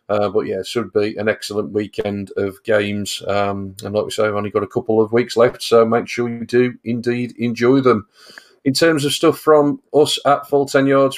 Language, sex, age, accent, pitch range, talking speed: English, male, 40-59, British, 110-125 Hz, 225 wpm